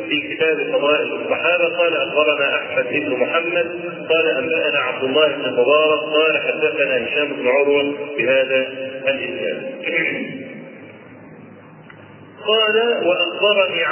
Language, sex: Arabic, male